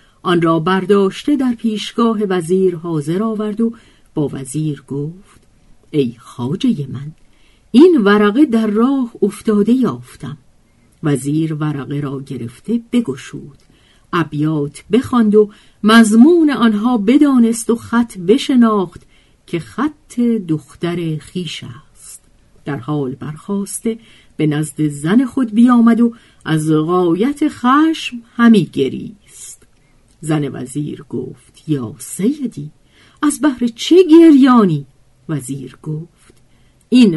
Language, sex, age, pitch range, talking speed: Persian, female, 50-69, 145-230 Hz, 105 wpm